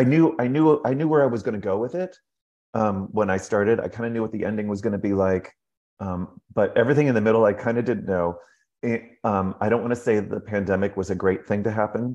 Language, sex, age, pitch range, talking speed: English, male, 30-49, 95-115 Hz, 275 wpm